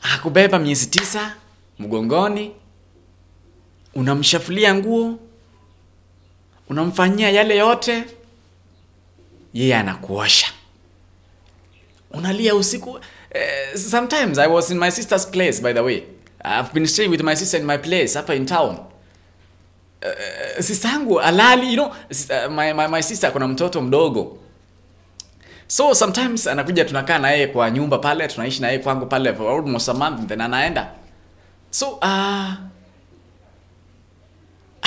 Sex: male